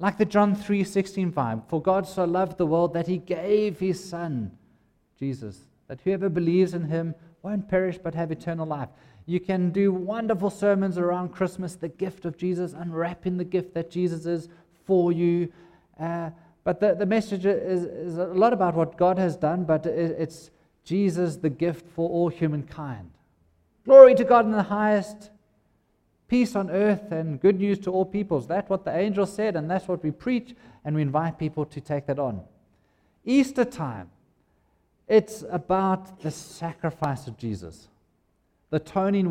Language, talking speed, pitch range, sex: English, 170 wpm, 145-190 Hz, male